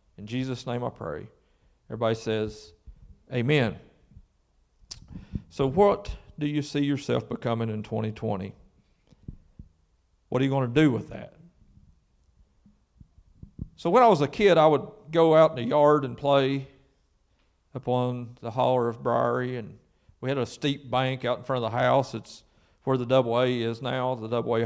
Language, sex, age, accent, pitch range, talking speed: English, male, 40-59, American, 115-145 Hz, 160 wpm